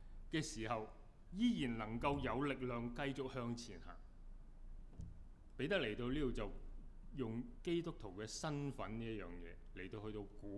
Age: 20-39